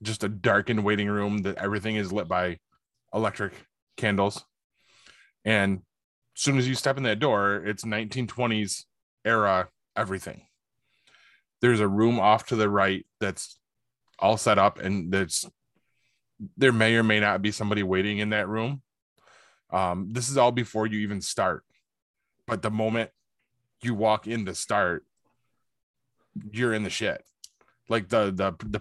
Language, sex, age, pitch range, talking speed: English, male, 20-39, 95-115 Hz, 150 wpm